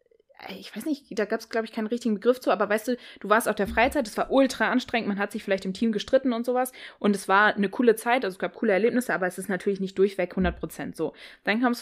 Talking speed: 275 wpm